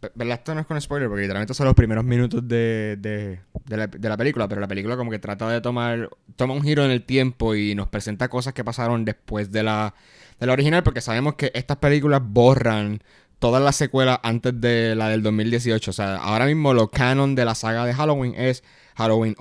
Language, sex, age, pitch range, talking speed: Spanish, male, 20-39, 105-135 Hz, 225 wpm